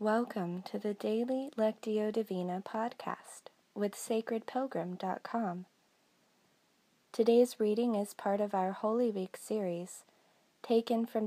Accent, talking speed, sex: American, 105 wpm, female